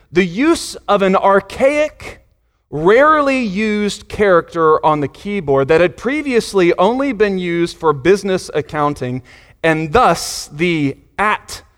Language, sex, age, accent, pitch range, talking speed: English, male, 30-49, American, 150-205 Hz, 120 wpm